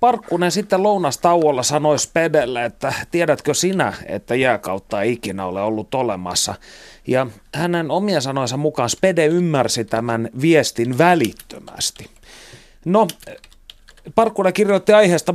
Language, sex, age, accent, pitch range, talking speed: Finnish, male, 30-49, native, 120-165 Hz, 115 wpm